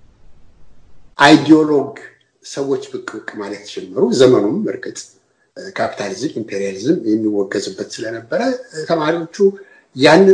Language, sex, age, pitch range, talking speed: Amharic, male, 60-79, 125-185 Hz, 75 wpm